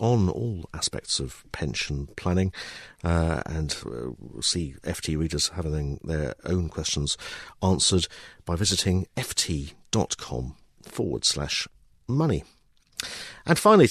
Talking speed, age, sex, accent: 110 wpm, 50-69, male, British